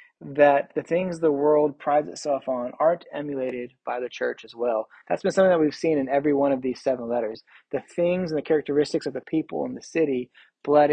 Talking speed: 220 wpm